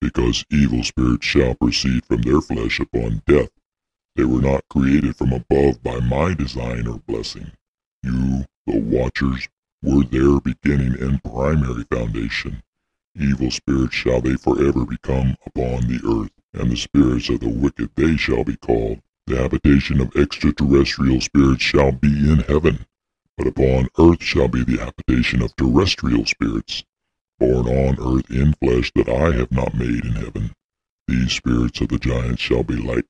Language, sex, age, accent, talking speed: English, female, 60-79, American, 160 wpm